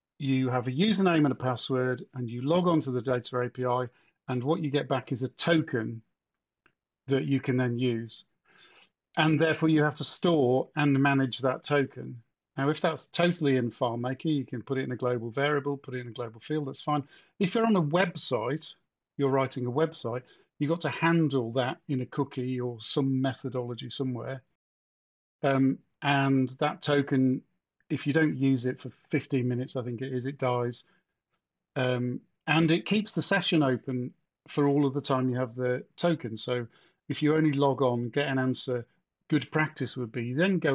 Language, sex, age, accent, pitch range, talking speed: English, male, 50-69, British, 125-150 Hz, 190 wpm